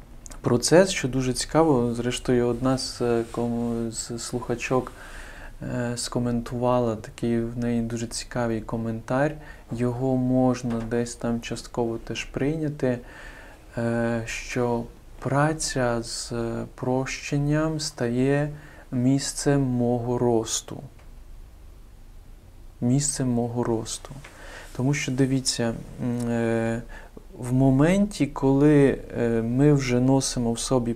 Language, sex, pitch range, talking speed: Ukrainian, male, 115-130 Hz, 95 wpm